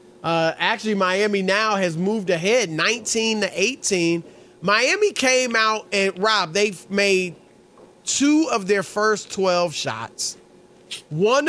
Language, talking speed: English, 125 wpm